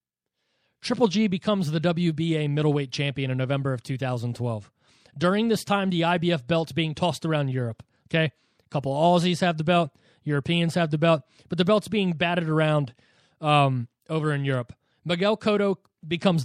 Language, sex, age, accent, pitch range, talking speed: English, male, 30-49, American, 140-175 Hz, 165 wpm